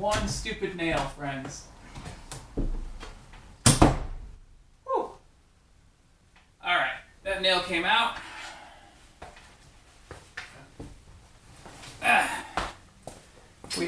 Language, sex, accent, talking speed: English, male, American, 50 wpm